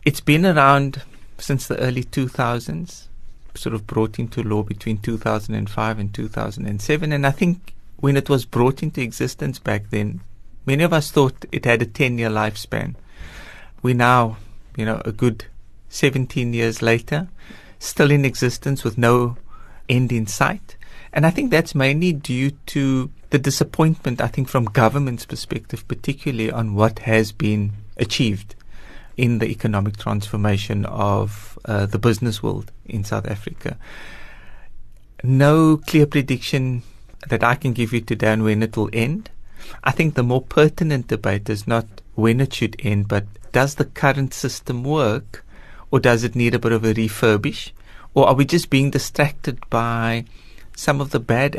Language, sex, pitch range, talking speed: English, male, 110-140 Hz, 160 wpm